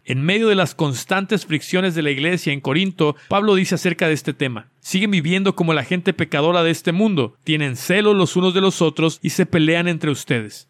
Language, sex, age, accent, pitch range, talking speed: Spanish, male, 50-69, Mexican, 150-200 Hz, 215 wpm